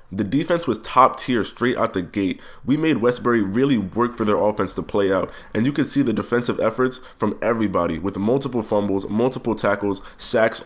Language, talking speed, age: English, 195 wpm, 20-39